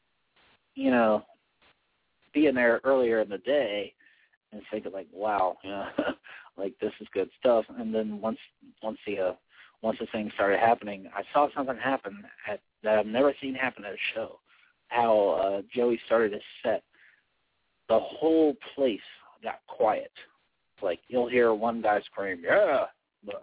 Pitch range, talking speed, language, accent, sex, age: 105-125 Hz, 160 wpm, English, American, male, 40-59